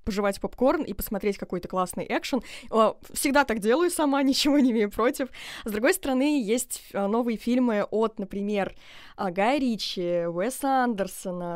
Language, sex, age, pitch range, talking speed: Russian, female, 20-39, 195-250 Hz, 140 wpm